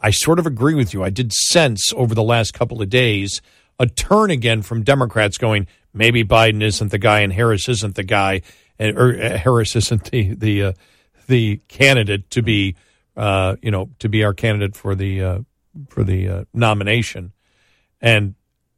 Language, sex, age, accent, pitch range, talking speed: English, male, 50-69, American, 105-125 Hz, 185 wpm